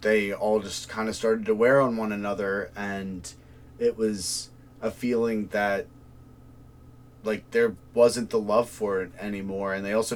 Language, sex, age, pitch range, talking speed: English, male, 30-49, 95-120 Hz, 165 wpm